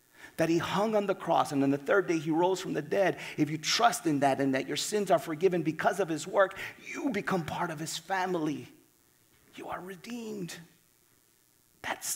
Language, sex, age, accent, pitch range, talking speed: English, male, 40-59, American, 155-190 Hz, 200 wpm